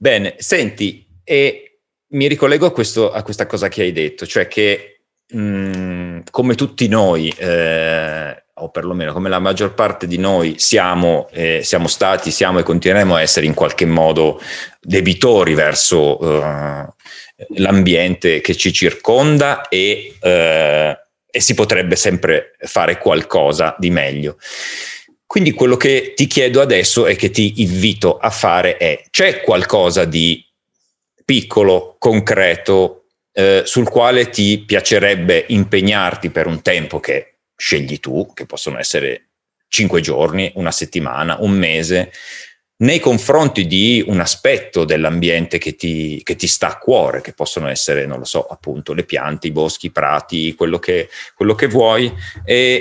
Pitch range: 85-140 Hz